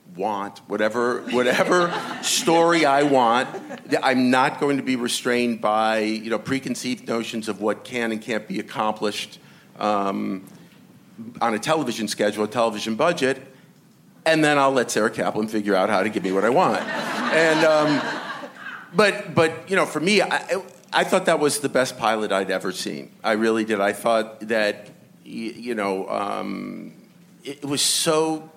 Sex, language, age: male, English, 50-69